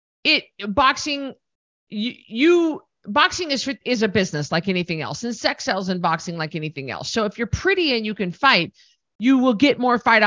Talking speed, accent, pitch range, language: 195 wpm, American, 190-260 Hz, English